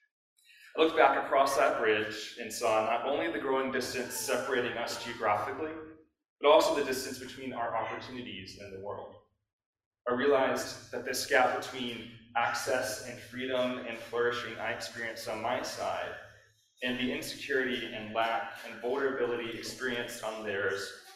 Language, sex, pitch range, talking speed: English, male, 115-145 Hz, 145 wpm